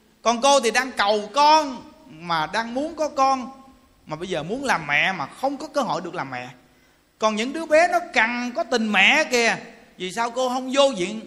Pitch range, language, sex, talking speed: 220-295 Hz, Vietnamese, male, 220 wpm